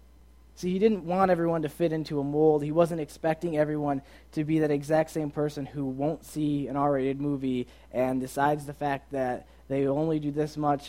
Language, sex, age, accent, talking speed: English, male, 20-39, American, 200 wpm